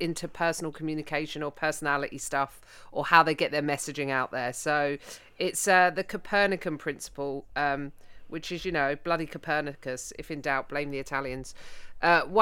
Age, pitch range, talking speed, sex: 40-59, 140-170 Hz, 165 wpm, female